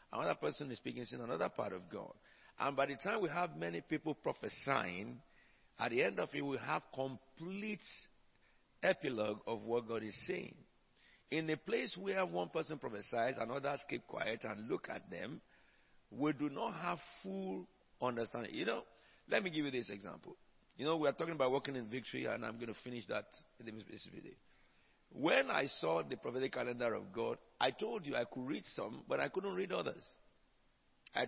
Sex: male